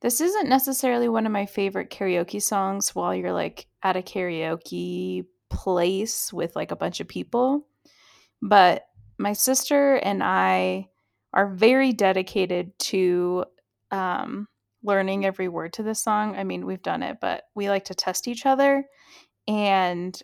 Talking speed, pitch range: 150 wpm, 175-215 Hz